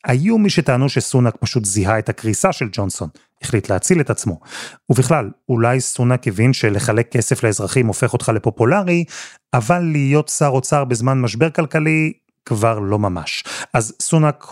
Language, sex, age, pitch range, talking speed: Hebrew, male, 30-49, 110-145 Hz, 150 wpm